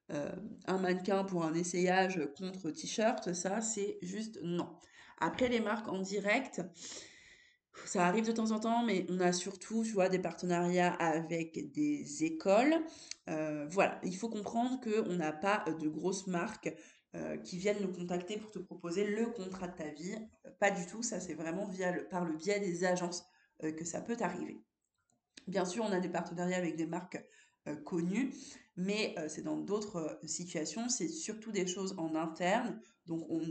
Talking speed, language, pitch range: 175 wpm, French, 165-200 Hz